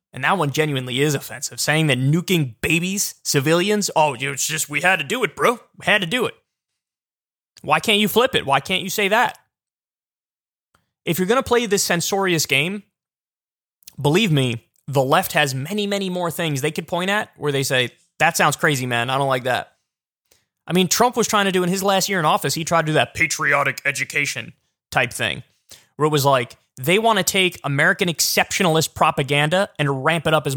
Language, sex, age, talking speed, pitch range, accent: English, male, 20-39, 205 wpm, 140-195 Hz, American